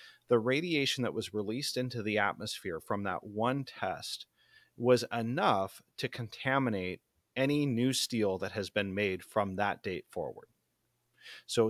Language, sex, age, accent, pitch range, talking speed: English, male, 30-49, American, 105-125 Hz, 145 wpm